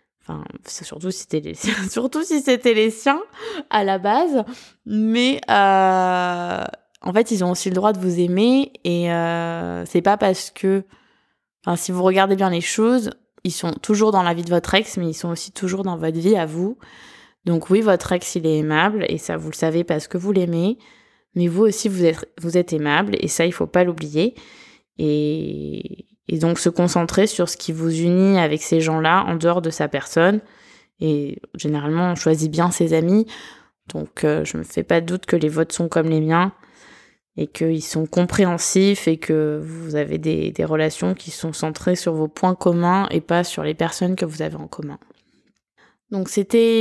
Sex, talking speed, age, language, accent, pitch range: female, 205 wpm, 20-39, French, French, 165-200 Hz